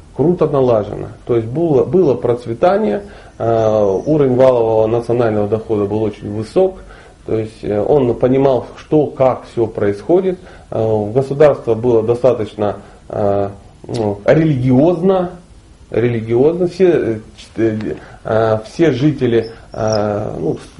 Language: Russian